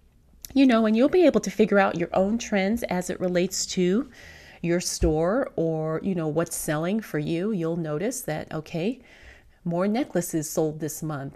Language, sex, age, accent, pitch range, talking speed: English, female, 30-49, American, 160-195 Hz, 180 wpm